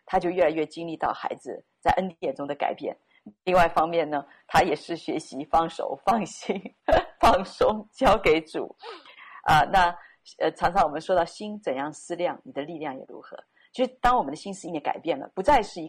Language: Chinese